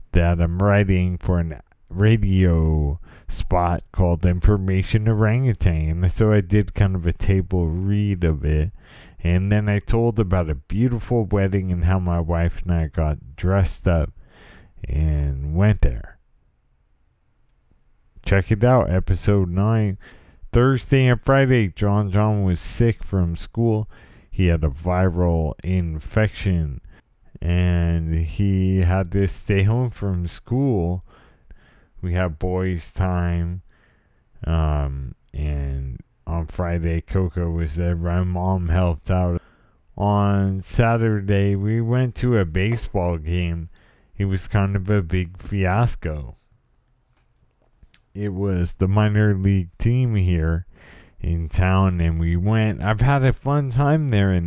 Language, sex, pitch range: English, male, 85-105 Hz